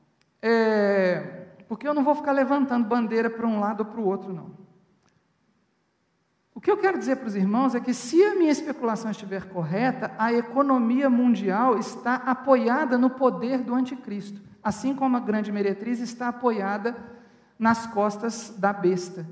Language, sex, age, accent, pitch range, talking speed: Portuguese, male, 50-69, Brazilian, 230-280 Hz, 160 wpm